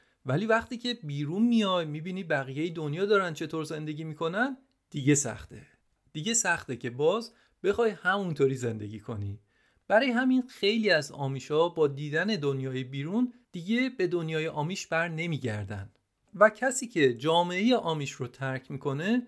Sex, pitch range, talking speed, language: male, 135-195 Hz, 140 wpm, Persian